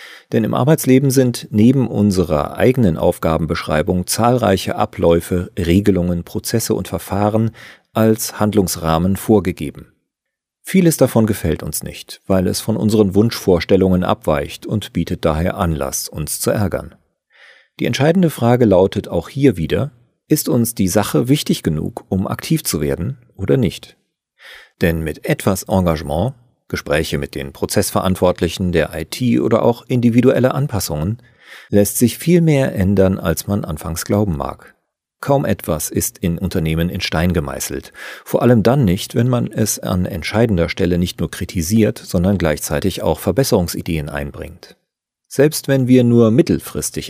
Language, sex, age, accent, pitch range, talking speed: German, male, 40-59, German, 85-120 Hz, 140 wpm